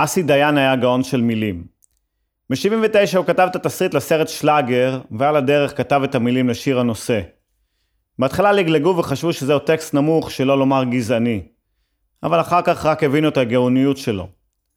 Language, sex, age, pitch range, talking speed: Hebrew, male, 30-49, 115-155 Hz, 150 wpm